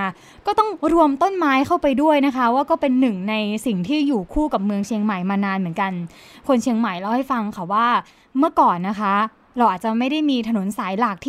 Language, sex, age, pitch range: Thai, female, 20-39, 215-280 Hz